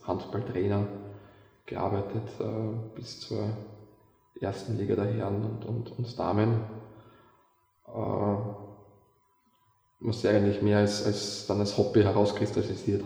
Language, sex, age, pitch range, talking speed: German, male, 20-39, 100-110 Hz, 115 wpm